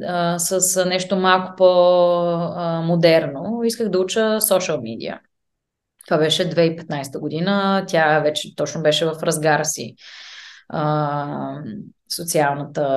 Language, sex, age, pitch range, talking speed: Bulgarian, female, 20-39, 160-195 Hz, 95 wpm